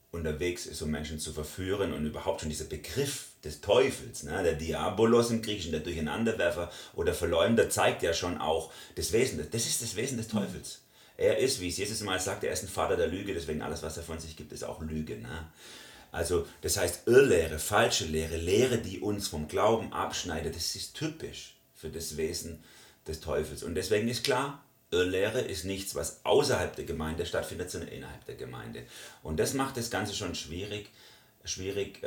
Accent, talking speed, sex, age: German, 185 wpm, male, 40-59